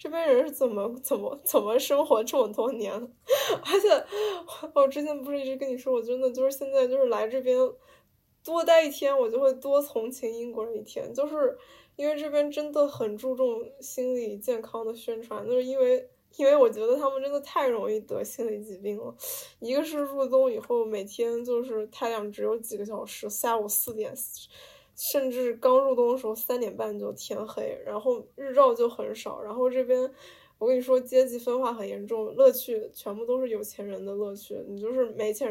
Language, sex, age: Chinese, female, 10-29